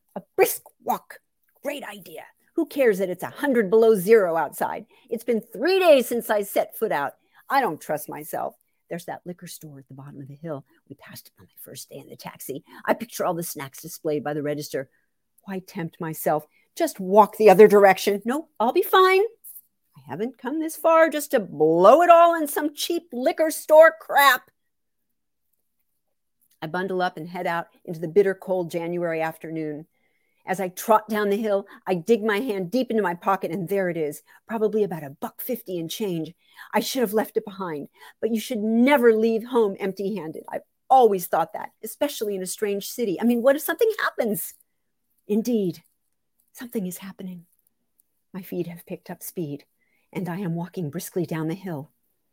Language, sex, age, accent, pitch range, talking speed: English, female, 50-69, American, 175-240 Hz, 195 wpm